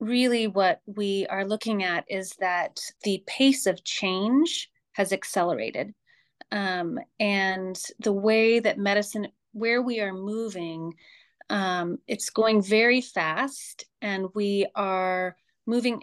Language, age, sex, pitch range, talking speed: English, 30-49, female, 180-215 Hz, 125 wpm